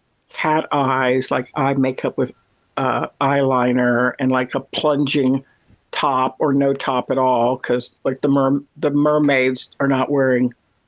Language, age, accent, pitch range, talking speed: English, 60-79, American, 135-160 Hz, 150 wpm